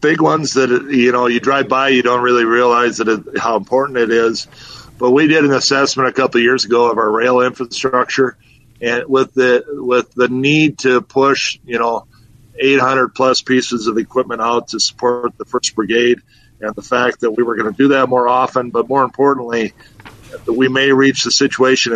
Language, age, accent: English, 50-69, American